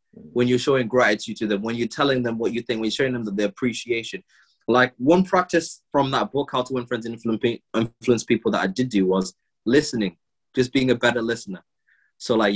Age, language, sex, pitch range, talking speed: 20-39, English, male, 110-150 Hz, 225 wpm